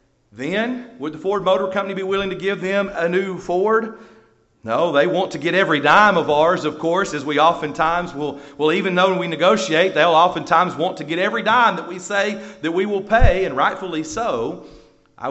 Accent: American